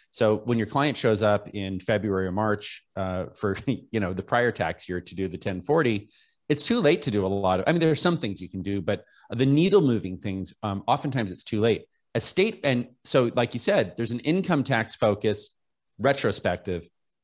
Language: English